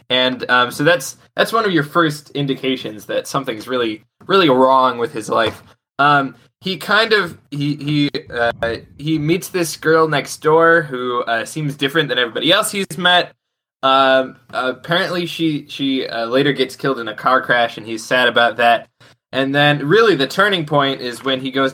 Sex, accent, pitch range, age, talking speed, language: male, American, 120-145 Hz, 20-39, 185 wpm, English